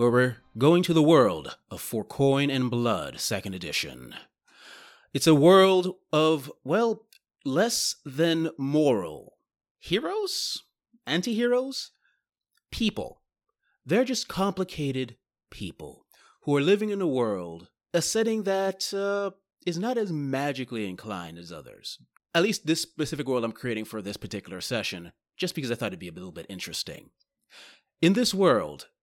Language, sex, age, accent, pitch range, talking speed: English, male, 30-49, American, 115-190 Hz, 145 wpm